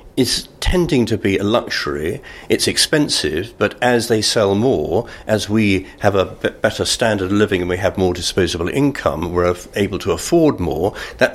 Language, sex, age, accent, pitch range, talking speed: English, male, 50-69, British, 95-120 Hz, 175 wpm